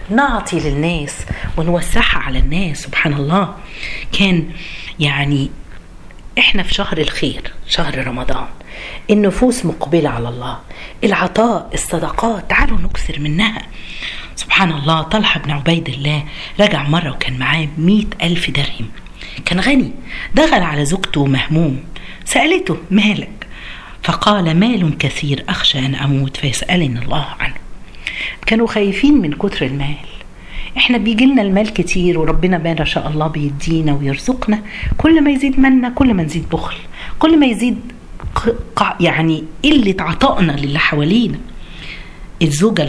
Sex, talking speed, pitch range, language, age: female, 120 wpm, 145-205 Hz, Arabic, 40-59